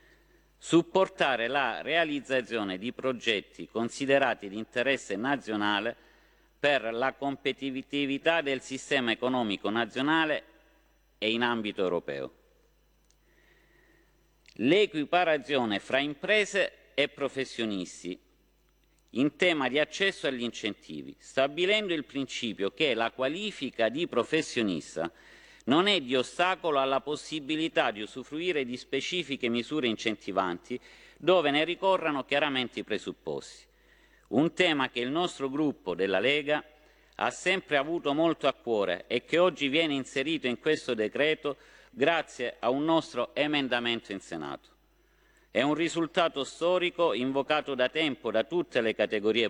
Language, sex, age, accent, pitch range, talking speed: Italian, male, 50-69, native, 120-160 Hz, 120 wpm